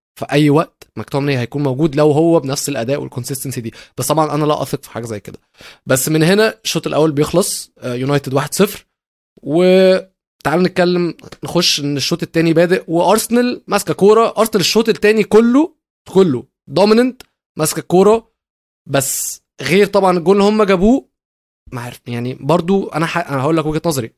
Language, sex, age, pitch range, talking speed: Arabic, male, 20-39, 135-170 Hz, 165 wpm